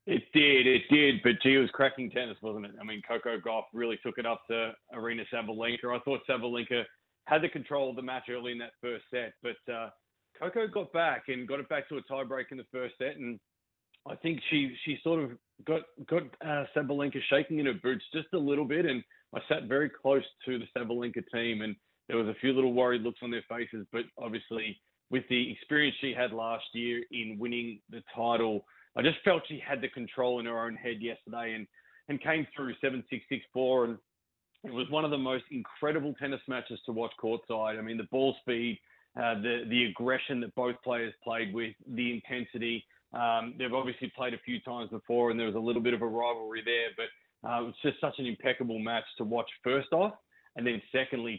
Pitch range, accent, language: 115-135 Hz, Australian, English